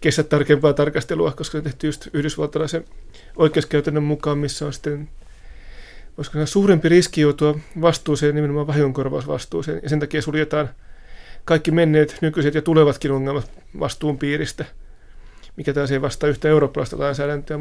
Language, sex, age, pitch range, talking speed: Finnish, male, 30-49, 145-160 Hz, 135 wpm